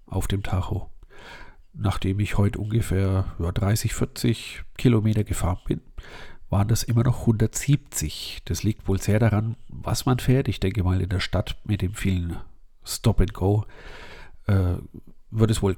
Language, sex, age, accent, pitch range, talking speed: German, male, 50-69, German, 95-110 Hz, 155 wpm